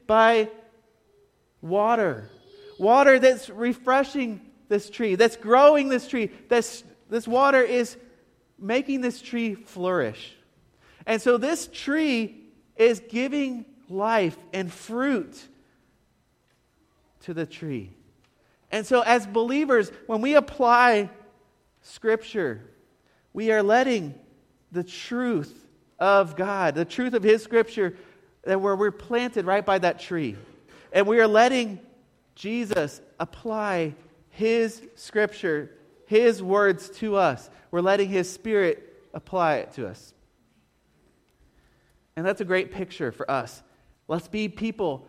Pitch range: 190-235 Hz